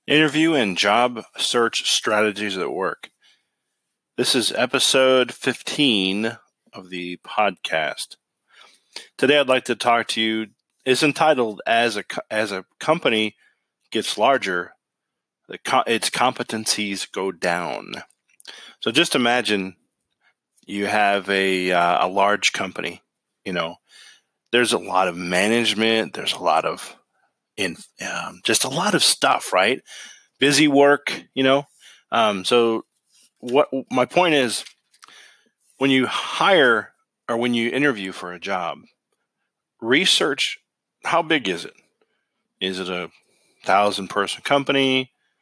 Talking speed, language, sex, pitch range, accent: 125 wpm, English, male, 100-125 Hz, American